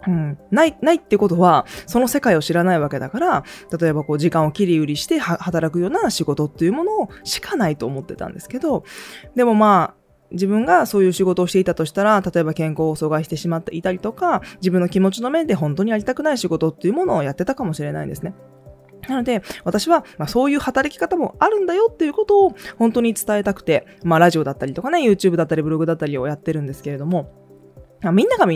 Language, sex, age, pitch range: Japanese, female, 20-39, 155-225 Hz